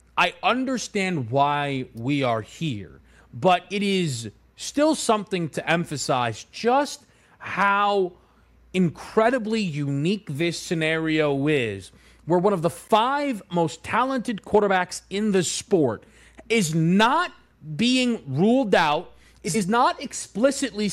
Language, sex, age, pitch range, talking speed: English, male, 30-49, 140-200 Hz, 110 wpm